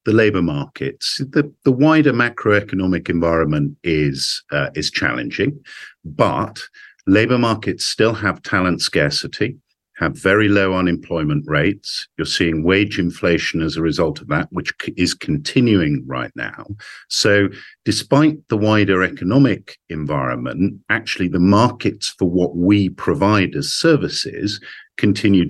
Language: English